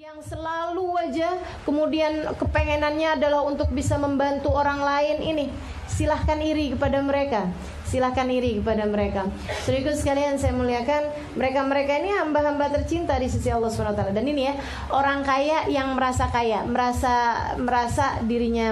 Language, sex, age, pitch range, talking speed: Indonesian, female, 20-39, 255-360 Hz, 145 wpm